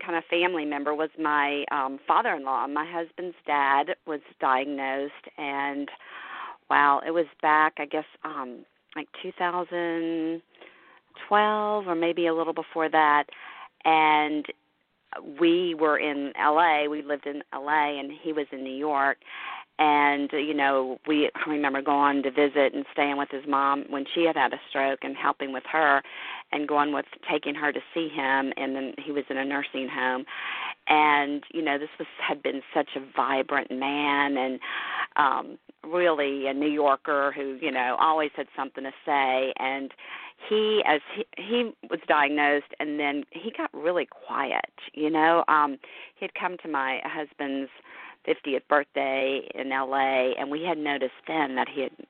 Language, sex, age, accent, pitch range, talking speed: English, female, 40-59, American, 140-160 Hz, 165 wpm